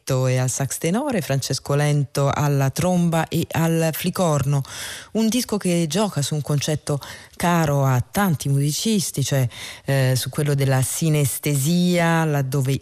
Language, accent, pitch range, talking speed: Italian, native, 140-185 Hz, 135 wpm